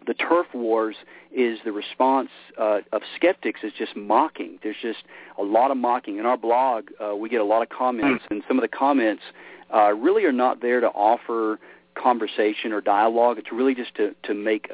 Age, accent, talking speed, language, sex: 40-59, American, 200 wpm, English, male